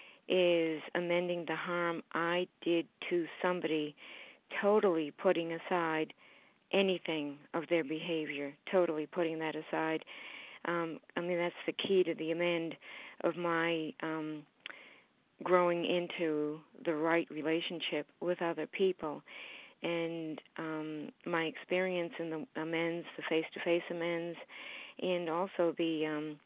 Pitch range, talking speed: 160-175 Hz, 125 wpm